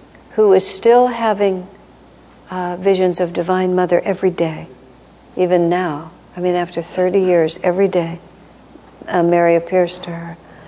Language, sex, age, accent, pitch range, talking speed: English, female, 60-79, American, 170-200 Hz, 140 wpm